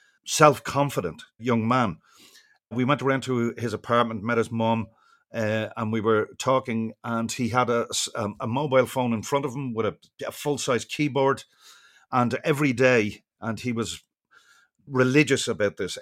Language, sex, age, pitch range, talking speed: English, male, 40-59, 105-130 Hz, 155 wpm